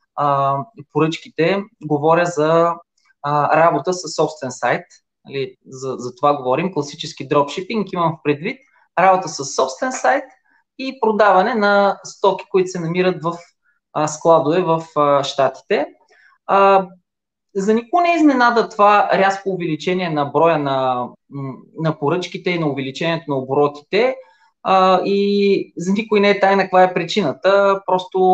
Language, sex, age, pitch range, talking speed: Bulgarian, male, 20-39, 150-190 Hz, 125 wpm